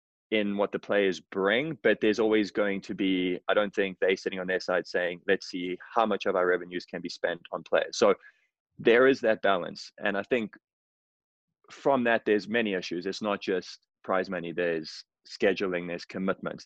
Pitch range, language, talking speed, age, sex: 90-115 Hz, English, 195 wpm, 20-39, male